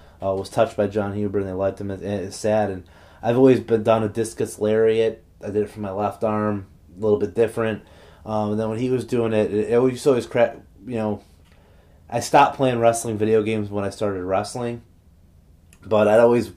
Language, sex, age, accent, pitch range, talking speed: English, male, 30-49, American, 90-110 Hz, 225 wpm